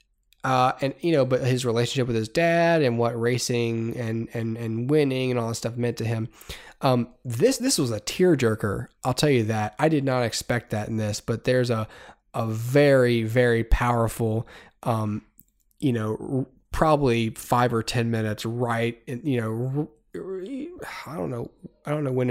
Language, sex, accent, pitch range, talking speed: English, male, American, 115-135 Hz, 190 wpm